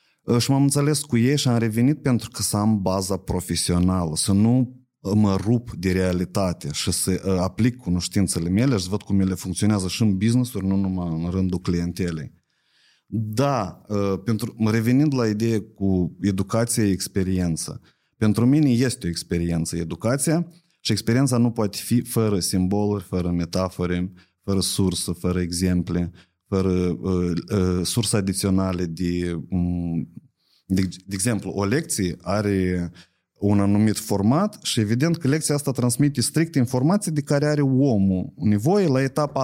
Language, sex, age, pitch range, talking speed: Romanian, male, 30-49, 95-125 Hz, 145 wpm